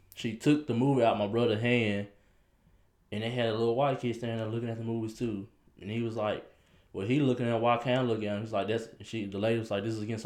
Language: English